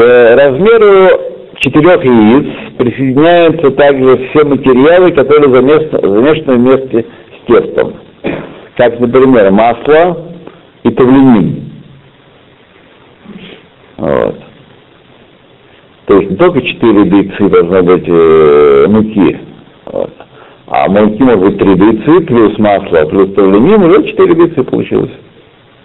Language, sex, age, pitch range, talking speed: Russian, male, 60-79, 125-200 Hz, 100 wpm